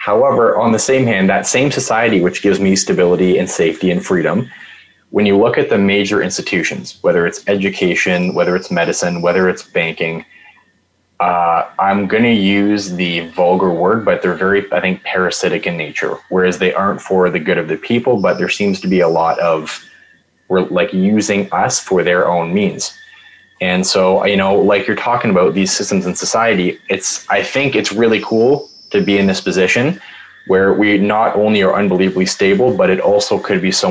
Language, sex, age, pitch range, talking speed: English, male, 20-39, 90-105 Hz, 190 wpm